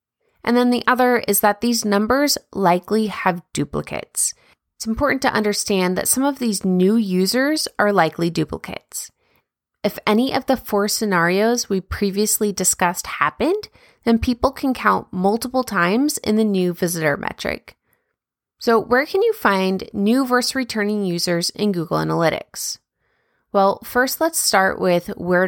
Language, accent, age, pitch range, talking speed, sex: English, American, 20-39, 185-250 Hz, 150 wpm, female